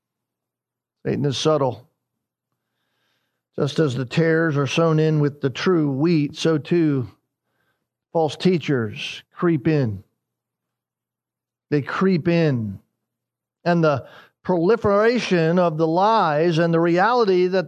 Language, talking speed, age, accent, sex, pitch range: English, 110 wpm, 50-69, American, male, 155-210 Hz